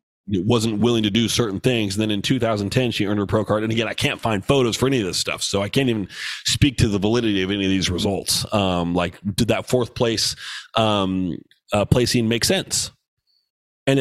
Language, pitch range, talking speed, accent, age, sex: English, 100-120 Hz, 225 wpm, American, 30-49, male